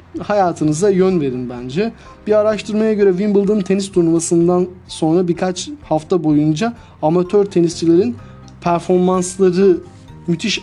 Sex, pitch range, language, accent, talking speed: male, 140-180 Hz, Turkish, native, 100 wpm